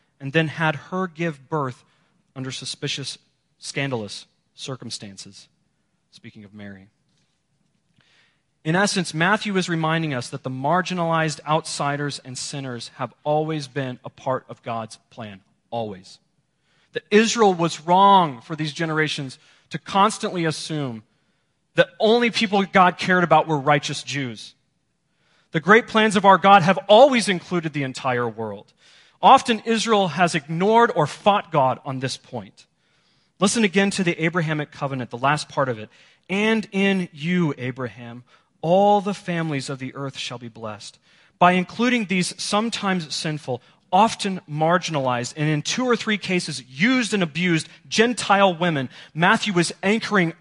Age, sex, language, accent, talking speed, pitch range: 30-49, male, English, American, 145 wpm, 140-185 Hz